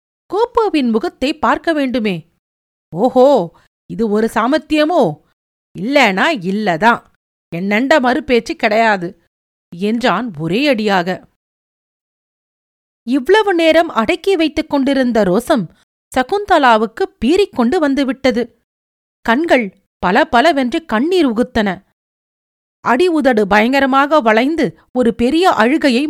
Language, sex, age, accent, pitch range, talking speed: Tamil, female, 40-59, native, 220-305 Hz, 85 wpm